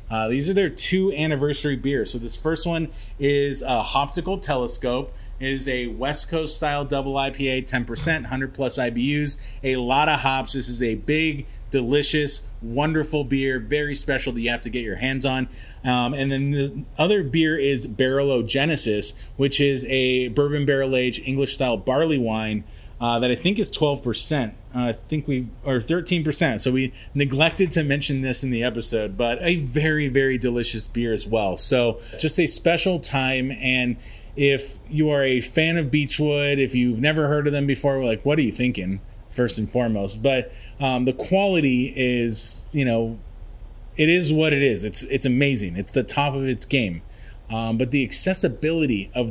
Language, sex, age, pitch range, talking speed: English, male, 30-49, 120-145 Hz, 180 wpm